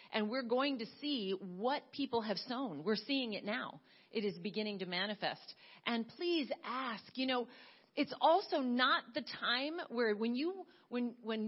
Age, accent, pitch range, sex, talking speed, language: 40-59, American, 215-275 Hz, female, 175 wpm, English